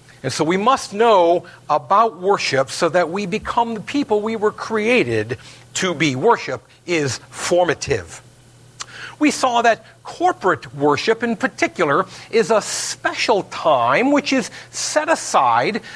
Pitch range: 135-225 Hz